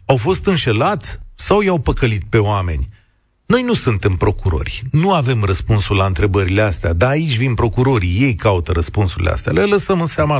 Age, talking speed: 40-59, 175 wpm